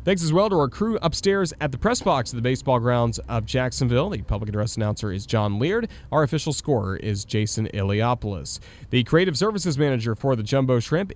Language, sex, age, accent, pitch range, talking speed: English, male, 30-49, American, 105-140 Hz, 205 wpm